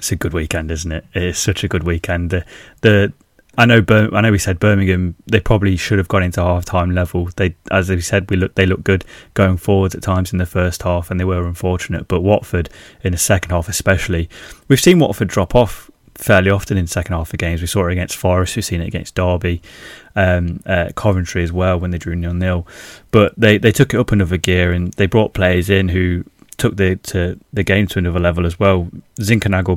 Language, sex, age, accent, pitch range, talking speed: English, male, 20-39, British, 90-100 Hz, 235 wpm